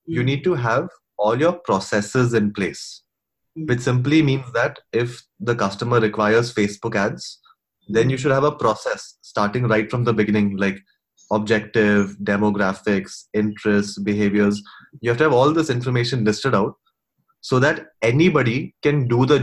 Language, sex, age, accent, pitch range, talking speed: Hindi, male, 20-39, native, 110-135 Hz, 155 wpm